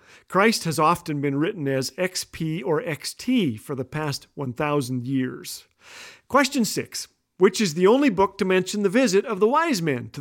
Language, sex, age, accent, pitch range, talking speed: English, male, 40-59, American, 160-230 Hz, 175 wpm